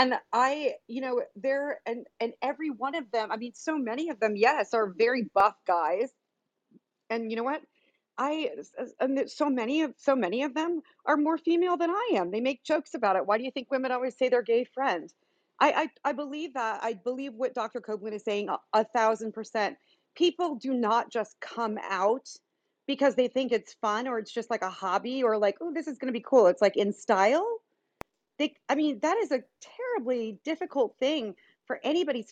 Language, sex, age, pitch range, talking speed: English, female, 40-59, 220-295 Hz, 210 wpm